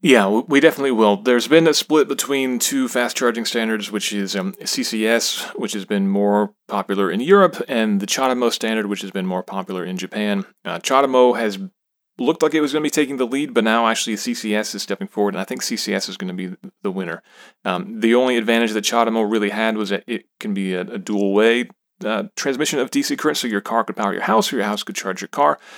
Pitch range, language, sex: 100-130 Hz, English, male